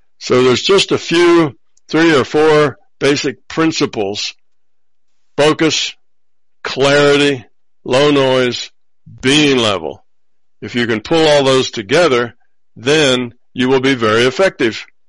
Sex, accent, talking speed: male, American, 115 wpm